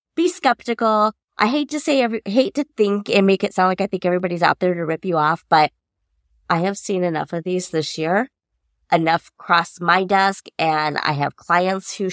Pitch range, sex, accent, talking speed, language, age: 165-215 Hz, female, American, 210 wpm, English, 20-39